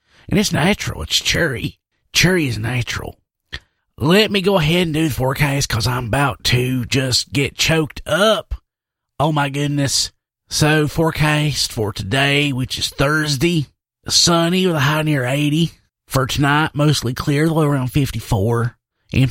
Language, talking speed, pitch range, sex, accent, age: English, 150 wpm, 120-155 Hz, male, American, 30-49